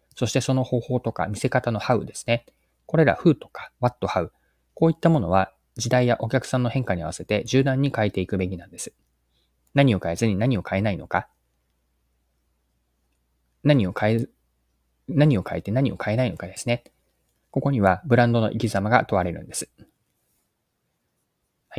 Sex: male